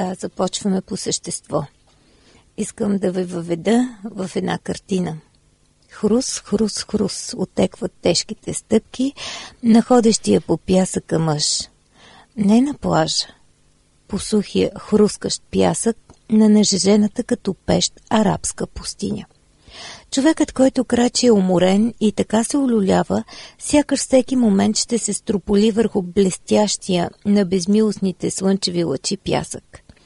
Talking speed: 110 wpm